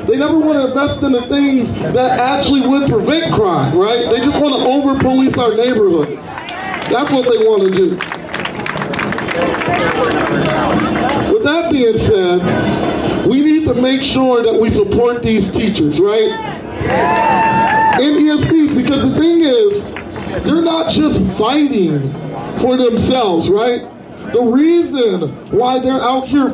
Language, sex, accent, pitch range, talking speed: English, male, American, 245-290 Hz, 140 wpm